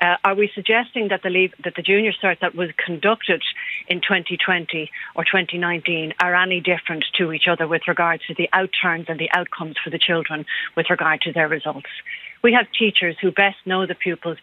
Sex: female